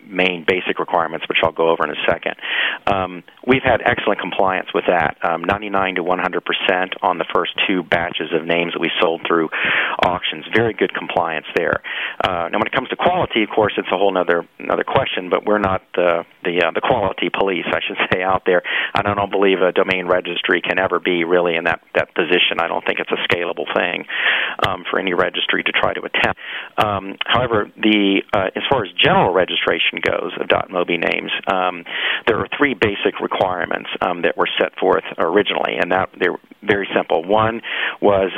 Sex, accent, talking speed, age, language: male, American, 200 wpm, 40-59, English